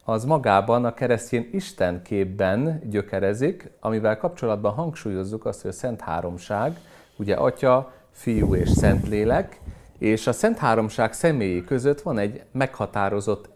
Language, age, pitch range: Hungarian, 40-59, 100-125 Hz